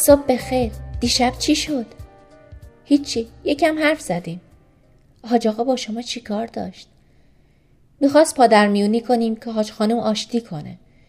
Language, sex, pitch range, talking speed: Persian, female, 210-260 Hz, 130 wpm